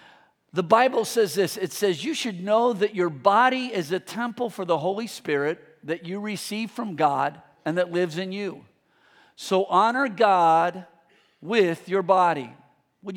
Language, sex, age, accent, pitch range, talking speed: English, male, 50-69, American, 185-250 Hz, 165 wpm